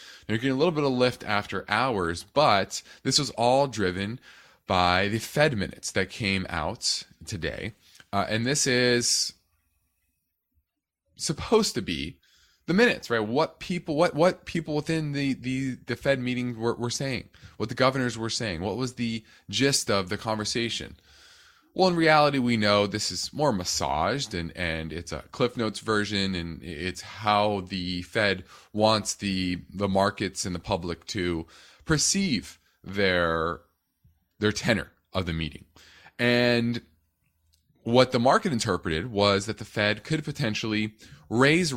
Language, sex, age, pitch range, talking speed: English, male, 20-39, 90-130 Hz, 155 wpm